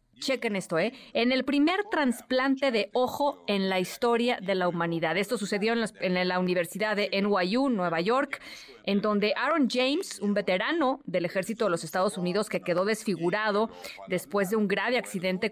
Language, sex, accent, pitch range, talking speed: Spanish, female, Mexican, 195-245 Hz, 180 wpm